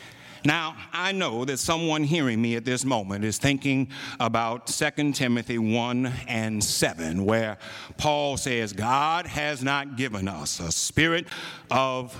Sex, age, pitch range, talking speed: male, 60-79, 120-170 Hz, 145 wpm